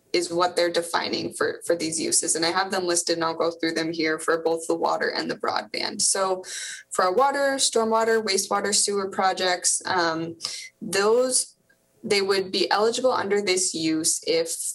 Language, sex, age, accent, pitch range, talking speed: English, female, 20-39, American, 170-210 Hz, 180 wpm